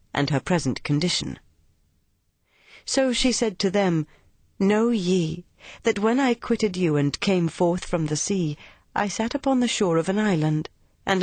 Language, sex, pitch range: Chinese, female, 150-200 Hz